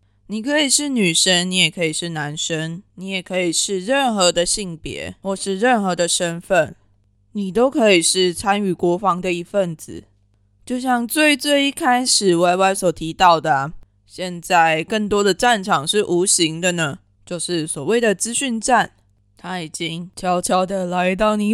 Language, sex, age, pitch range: Chinese, female, 20-39, 170-225 Hz